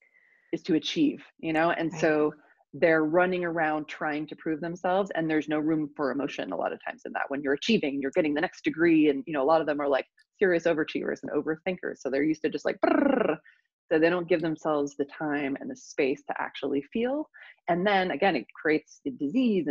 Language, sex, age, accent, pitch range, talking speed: English, female, 30-49, American, 150-205 Hz, 220 wpm